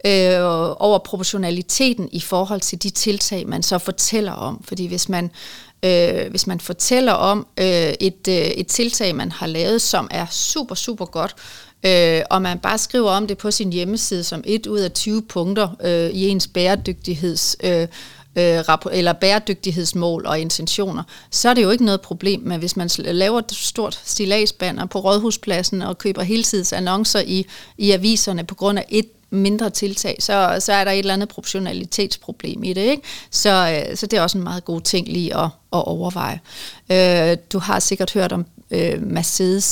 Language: Danish